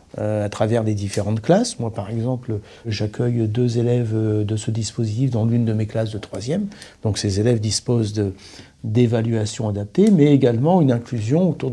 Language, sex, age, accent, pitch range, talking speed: French, male, 50-69, French, 110-135 Hz, 165 wpm